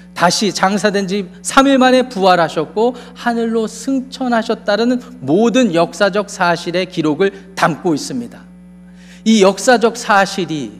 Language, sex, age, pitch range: Korean, male, 40-59, 175-210 Hz